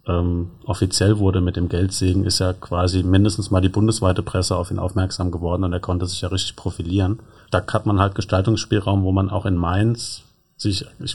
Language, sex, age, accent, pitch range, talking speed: German, male, 30-49, German, 90-100 Hz, 195 wpm